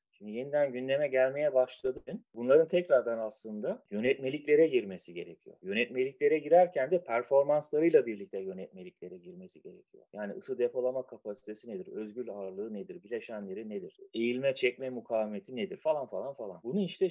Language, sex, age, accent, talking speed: Turkish, male, 30-49, native, 135 wpm